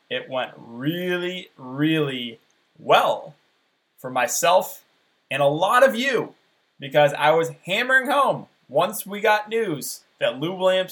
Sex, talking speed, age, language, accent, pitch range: male, 130 wpm, 20-39, English, American, 135-170 Hz